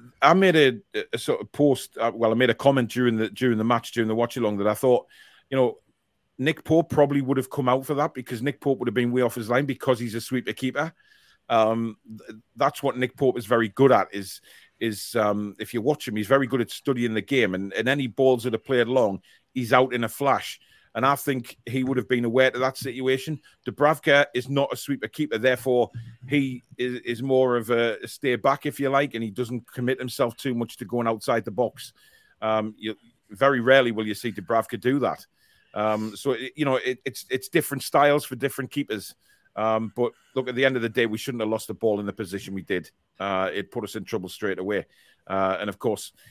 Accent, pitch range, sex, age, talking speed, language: British, 115-135 Hz, male, 40-59, 235 wpm, English